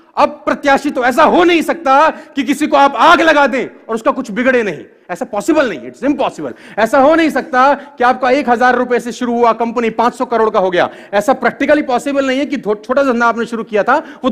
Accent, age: native, 40-59